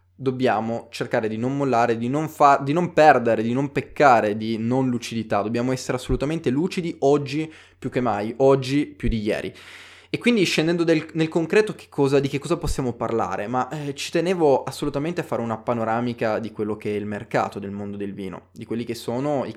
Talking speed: 200 wpm